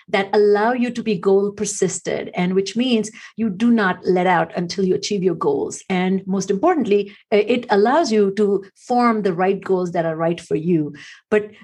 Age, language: 50-69, English